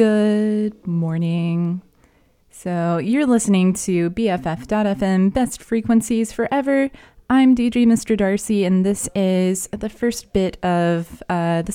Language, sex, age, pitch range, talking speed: English, female, 20-39, 175-230 Hz, 115 wpm